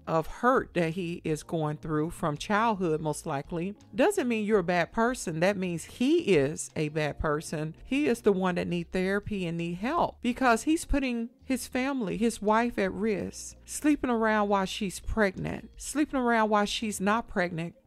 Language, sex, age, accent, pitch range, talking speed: English, female, 40-59, American, 180-240 Hz, 180 wpm